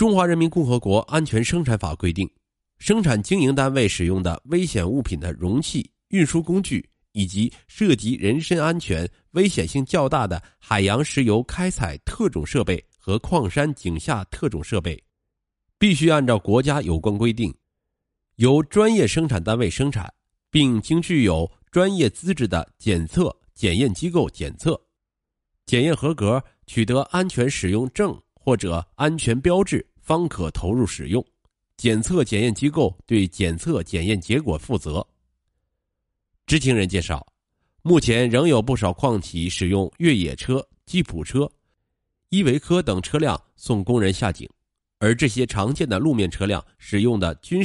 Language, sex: Chinese, male